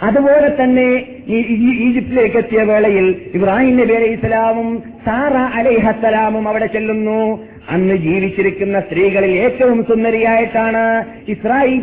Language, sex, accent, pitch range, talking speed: Malayalam, male, native, 200-240 Hz, 95 wpm